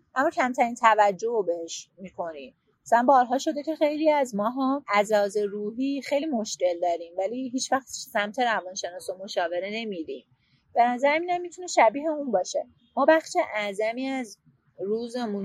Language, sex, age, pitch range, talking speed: English, female, 30-49, 190-250 Hz, 150 wpm